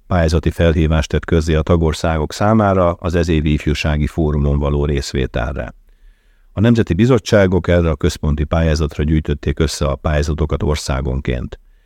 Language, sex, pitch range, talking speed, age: Hungarian, male, 75-90 Hz, 125 wpm, 50-69